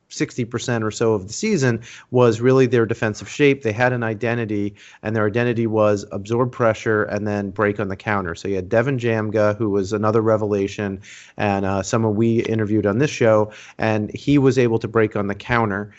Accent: American